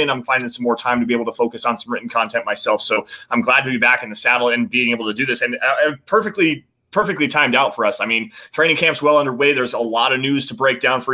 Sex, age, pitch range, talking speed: male, 20-39, 125-150 Hz, 295 wpm